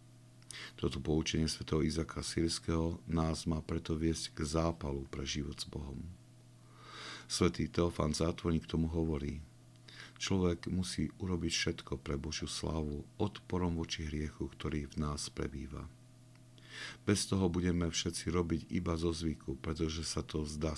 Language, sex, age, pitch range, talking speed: Slovak, male, 50-69, 75-100 Hz, 135 wpm